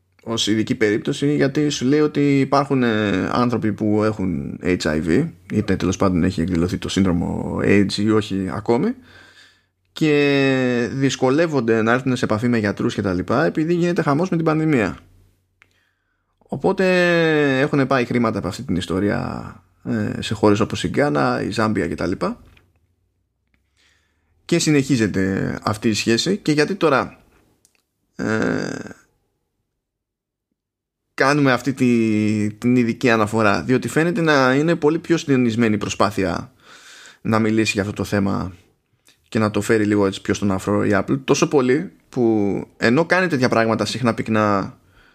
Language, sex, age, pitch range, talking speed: Greek, male, 20-39, 100-140 Hz, 140 wpm